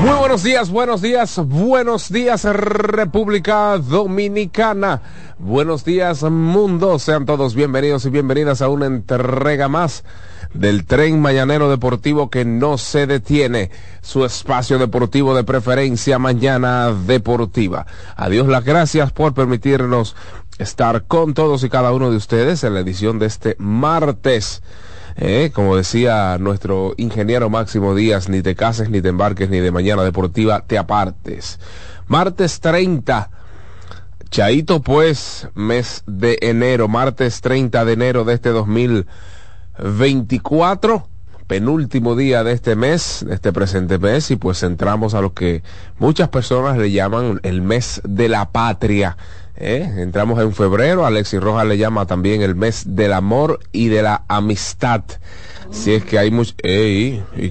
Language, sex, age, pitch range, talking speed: Spanish, male, 30-49, 95-140 Hz, 140 wpm